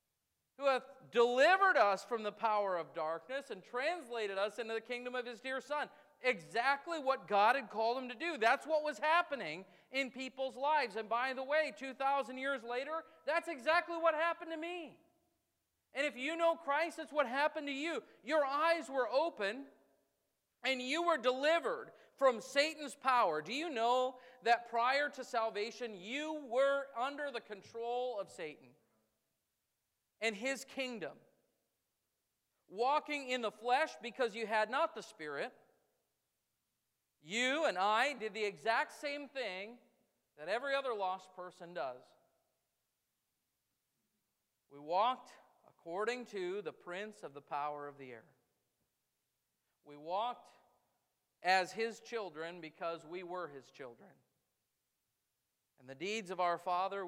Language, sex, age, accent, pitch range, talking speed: English, male, 40-59, American, 200-285 Hz, 145 wpm